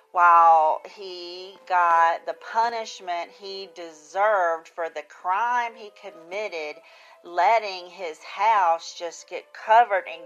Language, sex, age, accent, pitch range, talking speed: English, female, 40-59, American, 165-210 Hz, 110 wpm